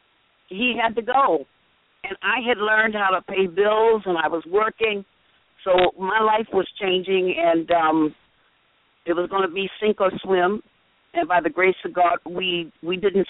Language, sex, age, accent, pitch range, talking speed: English, female, 50-69, American, 170-205 Hz, 175 wpm